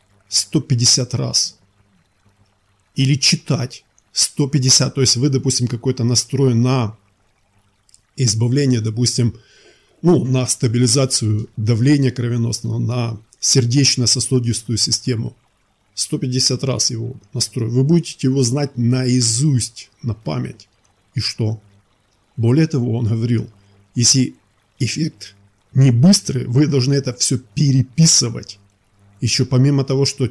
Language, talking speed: Bulgarian, 100 wpm